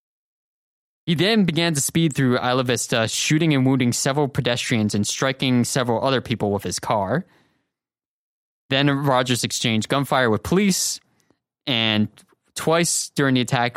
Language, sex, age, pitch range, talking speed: English, male, 20-39, 110-140 Hz, 140 wpm